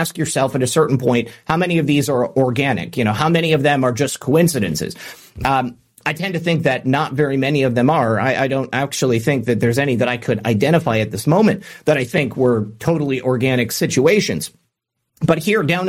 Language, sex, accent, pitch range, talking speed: English, male, American, 130-175 Hz, 220 wpm